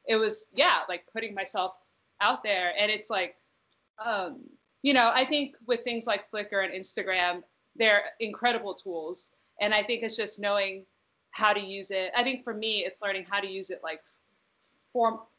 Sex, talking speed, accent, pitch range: female, 185 wpm, American, 185-230 Hz